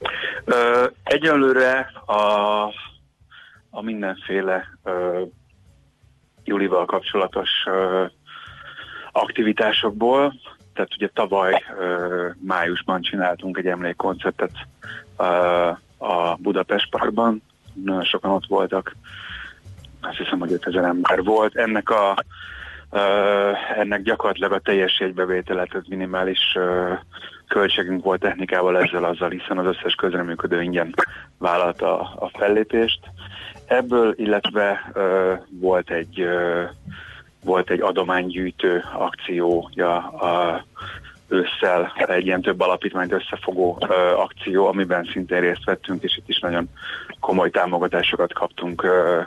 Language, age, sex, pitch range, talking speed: Hungarian, 30-49, male, 90-100 Hz, 90 wpm